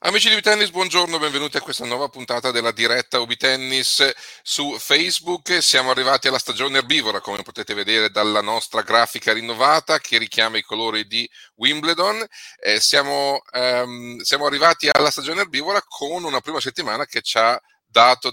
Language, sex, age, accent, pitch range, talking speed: Italian, male, 40-59, native, 110-140 Hz, 155 wpm